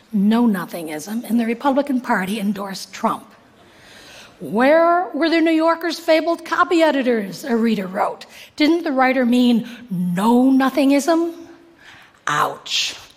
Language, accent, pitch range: Korean, American, 220-285 Hz